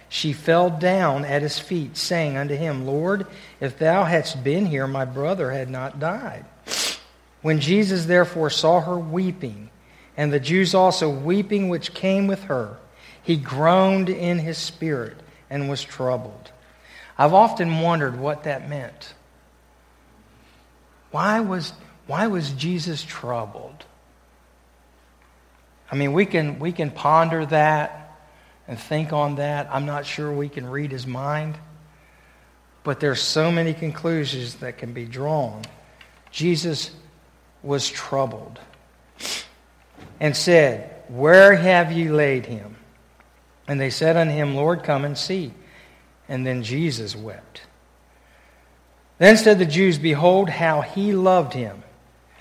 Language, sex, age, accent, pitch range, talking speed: English, male, 60-79, American, 120-165 Hz, 135 wpm